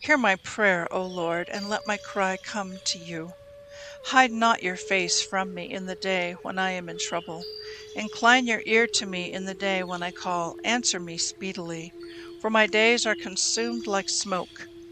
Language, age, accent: English, 60-79, American